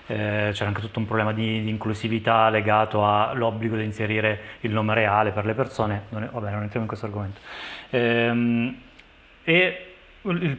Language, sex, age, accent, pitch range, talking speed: Italian, male, 20-39, native, 110-125 Hz, 170 wpm